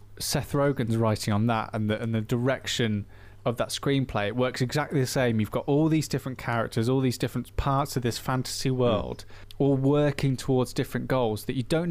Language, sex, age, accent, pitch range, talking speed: English, male, 20-39, British, 110-135 Hz, 200 wpm